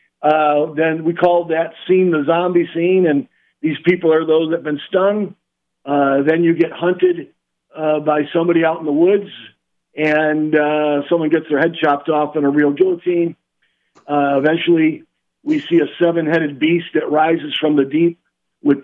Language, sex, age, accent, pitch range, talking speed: English, male, 50-69, American, 150-175 Hz, 175 wpm